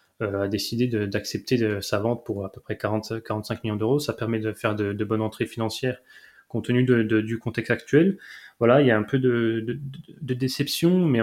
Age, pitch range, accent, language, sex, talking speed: 20-39, 110-125 Hz, French, French, male, 225 wpm